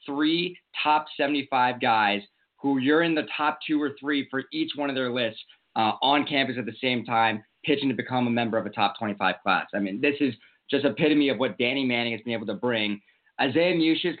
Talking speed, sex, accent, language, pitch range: 220 wpm, male, American, English, 125-150 Hz